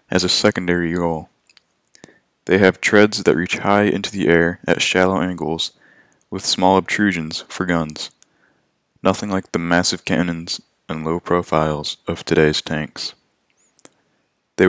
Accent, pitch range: American, 80-95 Hz